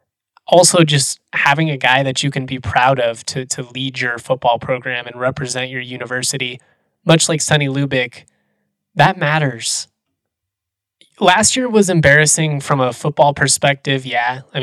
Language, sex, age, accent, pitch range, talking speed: English, male, 20-39, American, 125-150 Hz, 150 wpm